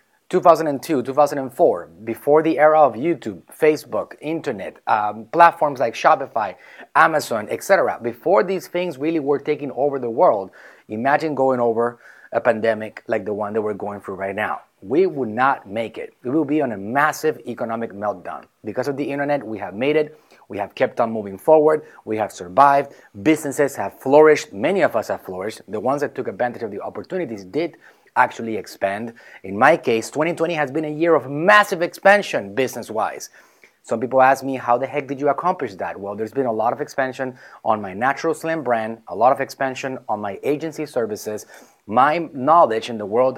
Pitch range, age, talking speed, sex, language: 115-155 Hz, 30-49, 185 wpm, male, English